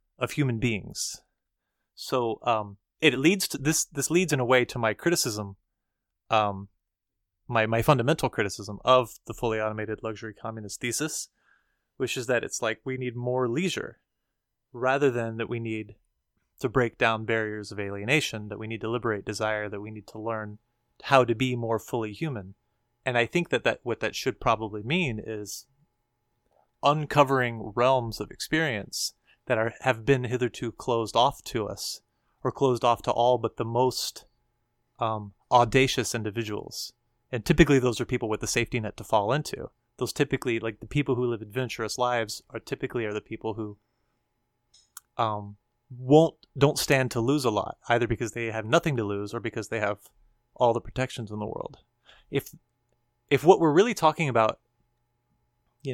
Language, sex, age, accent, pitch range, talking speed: English, male, 30-49, American, 110-130 Hz, 175 wpm